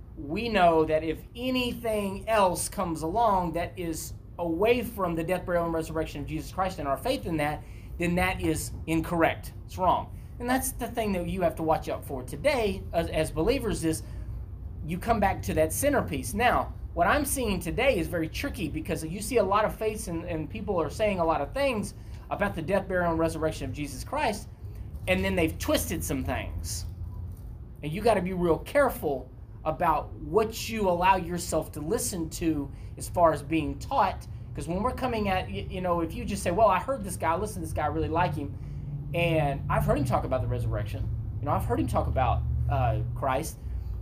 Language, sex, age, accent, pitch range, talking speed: English, male, 30-49, American, 110-175 Hz, 205 wpm